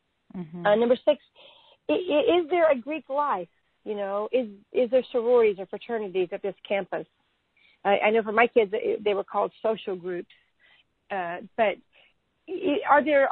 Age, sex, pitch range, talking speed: 40-59, female, 190-245 Hz, 155 wpm